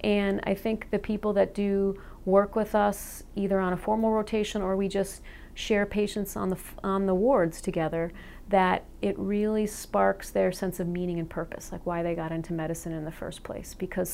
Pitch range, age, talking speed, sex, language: 170-205 Hz, 40-59, 205 wpm, female, English